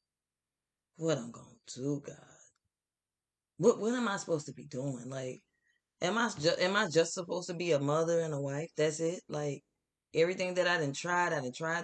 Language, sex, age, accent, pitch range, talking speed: English, female, 20-39, American, 130-175 Hz, 200 wpm